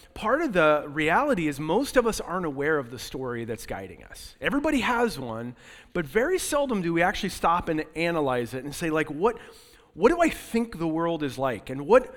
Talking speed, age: 210 wpm, 30-49